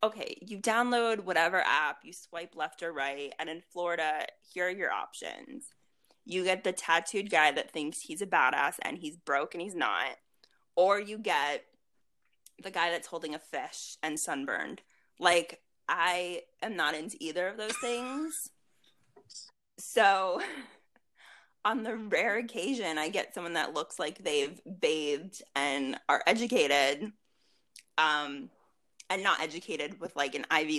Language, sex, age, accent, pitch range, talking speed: English, female, 20-39, American, 160-210 Hz, 150 wpm